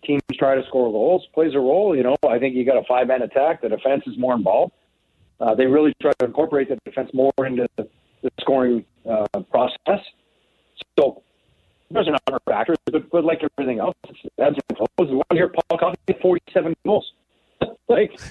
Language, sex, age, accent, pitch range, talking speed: English, male, 40-59, American, 130-165 Hz, 185 wpm